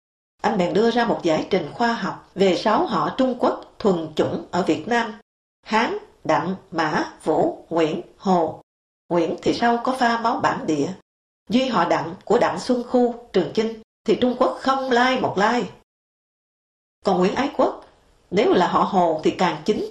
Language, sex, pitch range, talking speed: English, female, 180-245 Hz, 185 wpm